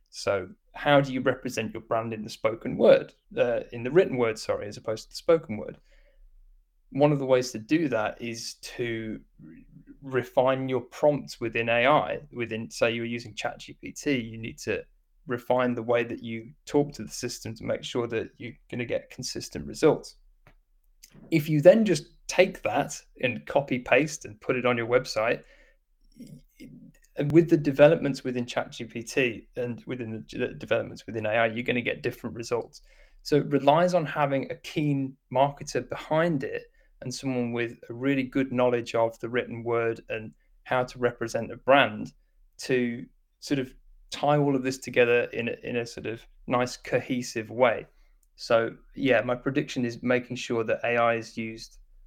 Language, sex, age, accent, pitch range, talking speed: English, male, 20-39, British, 115-145 Hz, 175 wpm